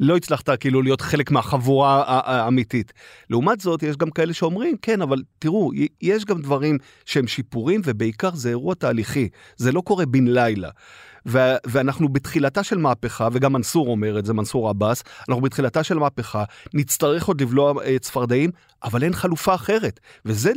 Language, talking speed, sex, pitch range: Hebrew, 160 wpm, male, 130-180 Hz